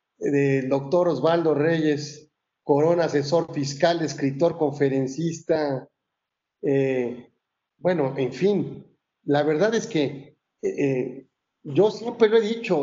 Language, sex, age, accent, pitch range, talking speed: Spanish, male, 40-59, Mexican, 140-165 Hz, 110 wpm